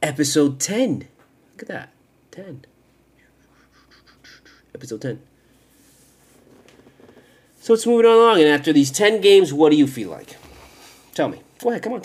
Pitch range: 135-190 Hz